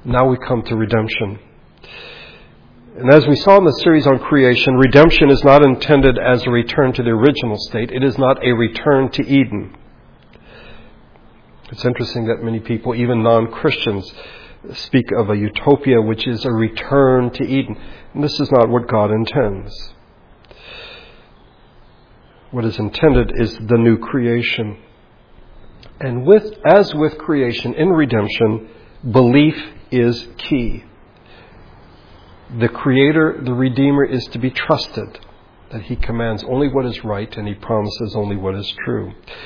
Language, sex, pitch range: English, male, 110-135 Hz